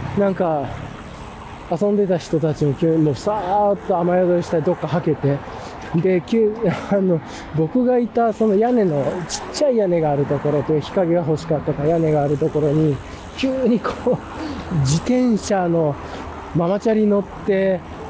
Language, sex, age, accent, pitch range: Japanese, male, 20-39, native, 145-205 Hz